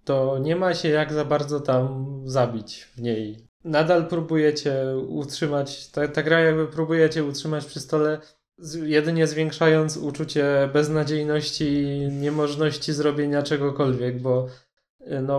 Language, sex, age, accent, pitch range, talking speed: Polish, male, 20-39, native, 140-155 Hz, 130 wpm